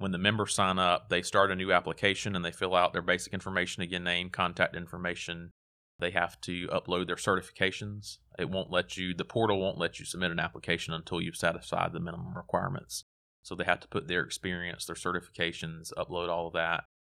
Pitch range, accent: 85-95 Hz, American